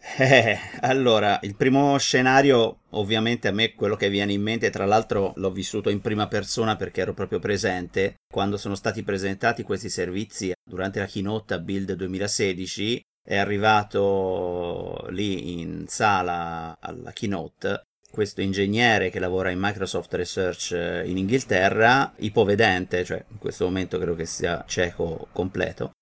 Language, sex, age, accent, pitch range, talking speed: Italian, male, 30-49, native, 90-100 Hz, 145 wpm